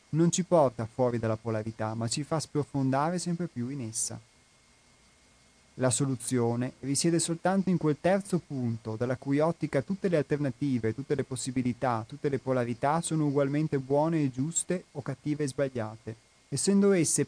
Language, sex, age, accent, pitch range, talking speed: Italian, male, 30-49, native, 125-160 Hz, 155 wpm